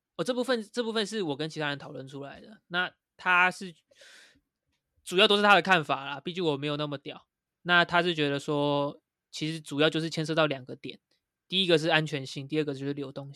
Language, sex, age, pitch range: Chinese, male, 20-39, 145-175 Hz